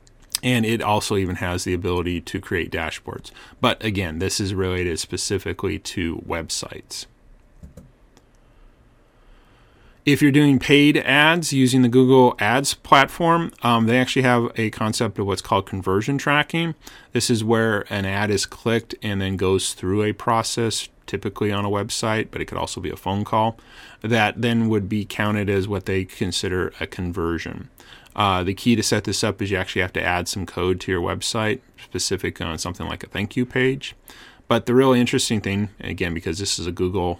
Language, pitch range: English, 95-125 Hz